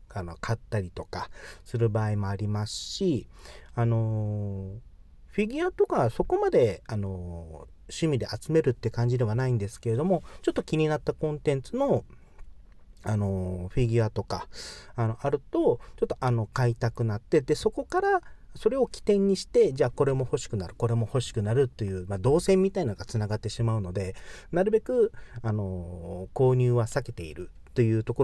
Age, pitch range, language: 40-59, 100-145 Hz, Japanese